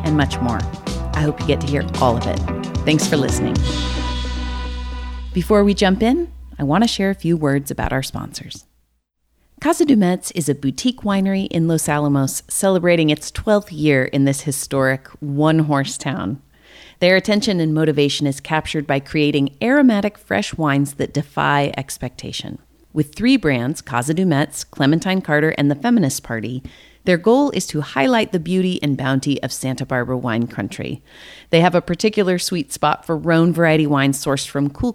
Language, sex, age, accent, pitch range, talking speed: English, female, 30-49, American, 135-180 Hz, 170 wpm